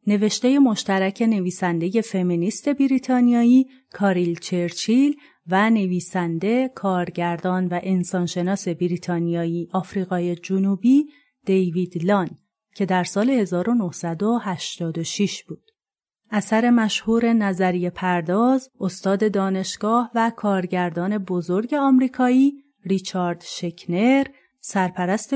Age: 30-49